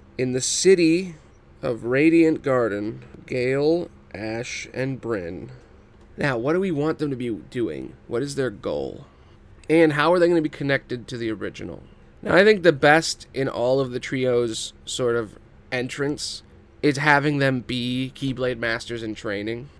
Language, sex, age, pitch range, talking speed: English, male, 20-39, 120-155 Hz, 165 wpm